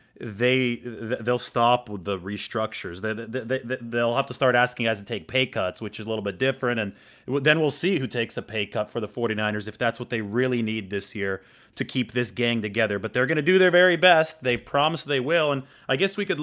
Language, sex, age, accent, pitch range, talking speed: English, male, 30-49, American, 115-140 Hz, 250 wpm